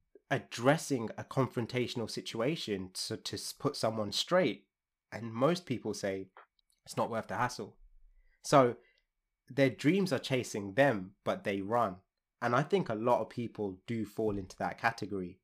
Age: 20-39